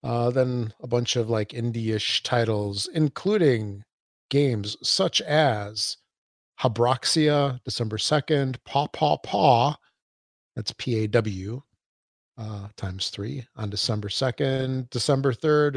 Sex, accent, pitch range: male, American, 110-130 Hz